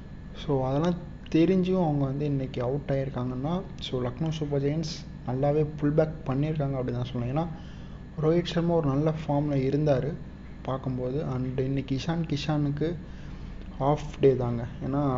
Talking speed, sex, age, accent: 140 wpm, male, 30-49, native